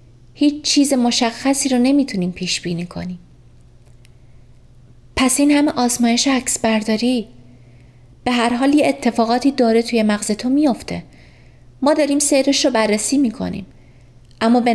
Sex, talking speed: female, 125 wpm